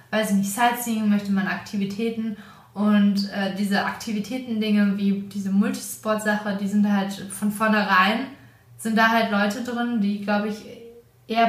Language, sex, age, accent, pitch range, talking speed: German, female, 20-39, German, 200-230 Hz, 150 wpm